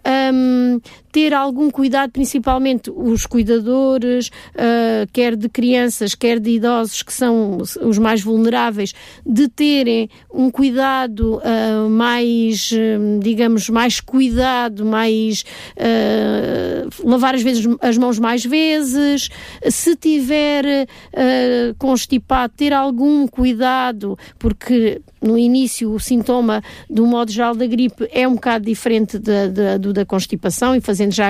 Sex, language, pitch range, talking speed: female, Italian, 215-255 Hz, 115 wpm